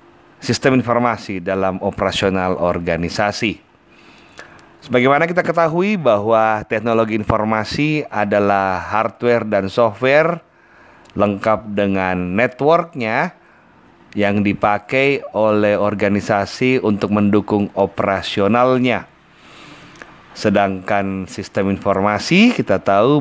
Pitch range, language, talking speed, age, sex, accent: 95-125 Hz, Indonesian, 80 wpm, 30-49, male, native